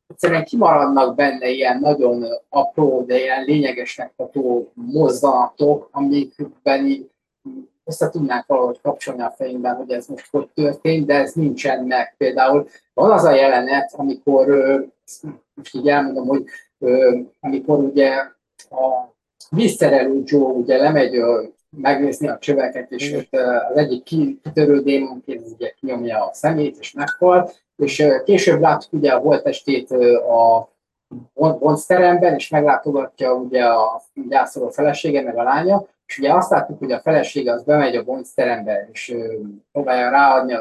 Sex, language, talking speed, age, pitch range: male, Hungarian, 135 wpm, 30-49, 130-160 Hz